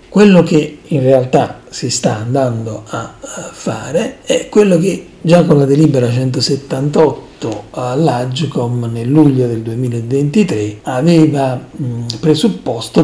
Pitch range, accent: 120-160 Hz, native